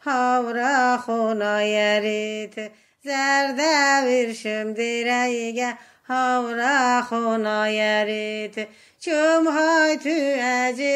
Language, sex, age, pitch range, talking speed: Russian, female, 30-49, 225-285 Hz, 70 wpm